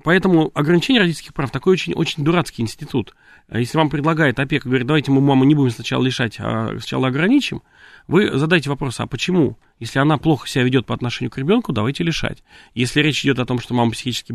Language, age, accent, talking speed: Russian, 30-49, native, 205 wpm